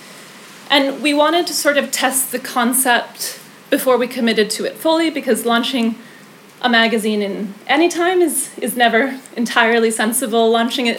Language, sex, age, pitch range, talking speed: English, female, 30-49, 215-260 Hz, 160 wpm